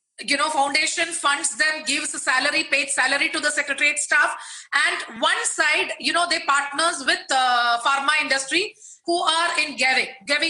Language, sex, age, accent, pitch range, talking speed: English, female, 30-49, Indian, 280-340 Hz, 175 wpm